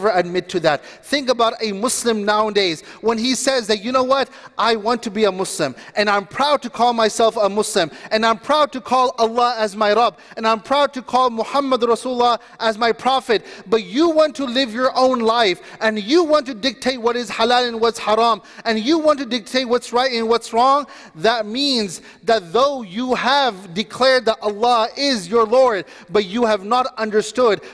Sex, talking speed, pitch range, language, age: male, 205 wpm, 205-240 Hz, English, 30-49